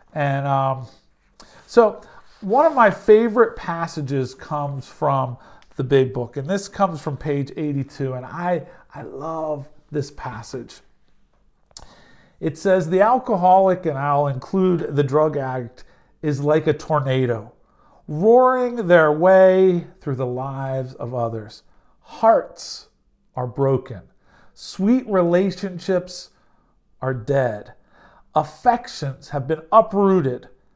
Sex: male